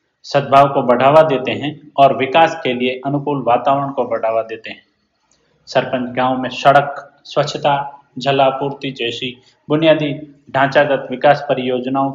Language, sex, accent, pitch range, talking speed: Hindi, male, native, 130-145 Hz, 130 wpm